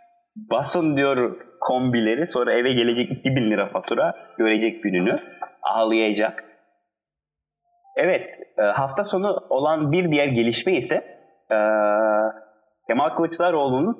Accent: native